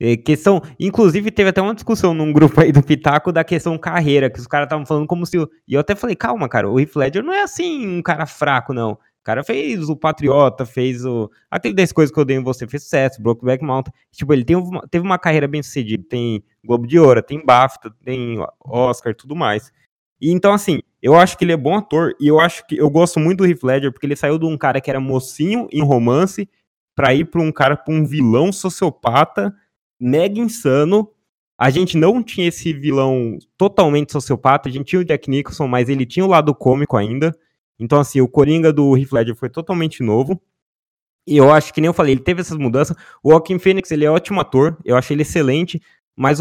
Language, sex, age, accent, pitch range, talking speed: Portuguese, male, 20-39, Brazilian, 130-175 Hz, 225 wpm